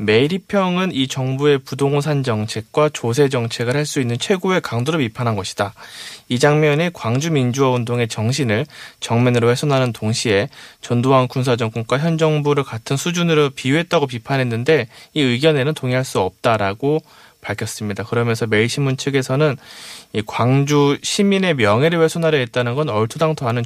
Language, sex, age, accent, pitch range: Korean, male, 20-39, native, 120-155 Hz